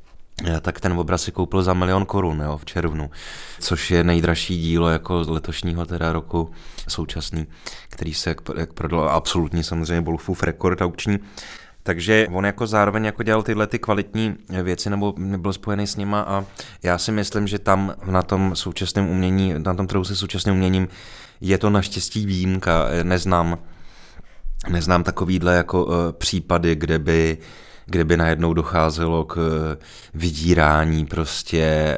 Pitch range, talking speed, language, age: 80-95 Hz, 150 wpm, Czech, 20-39